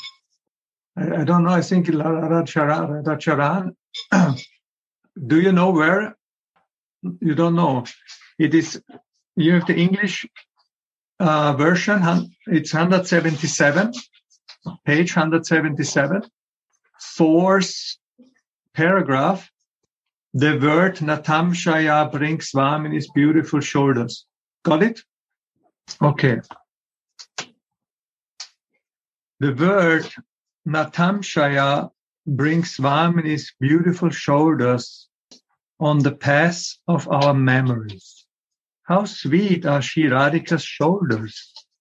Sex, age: male, 50-69